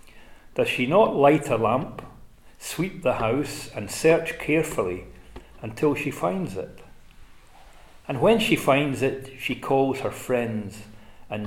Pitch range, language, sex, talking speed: 110-135 Hz, English, male, 135 wpm